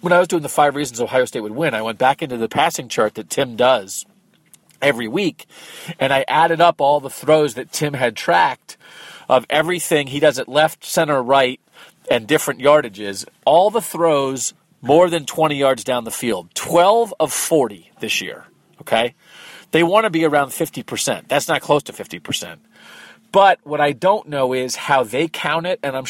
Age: 40-59